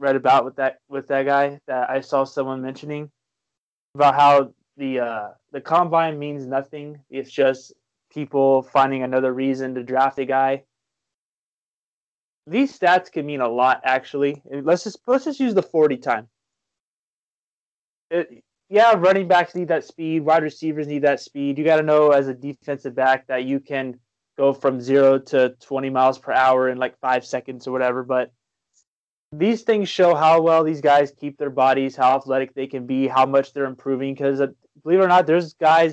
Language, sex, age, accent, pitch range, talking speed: English, male, 20-39, American, 130-145 Hz, 180 wpm